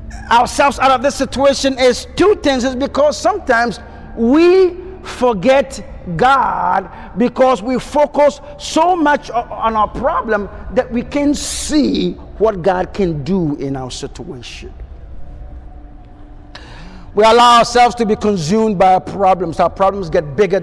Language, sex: English, male